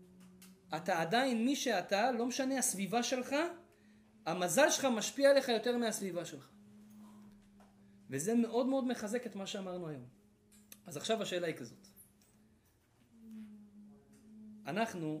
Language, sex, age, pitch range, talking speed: Hebrew, male, 30-49, 135-220 Hz, 115 wpm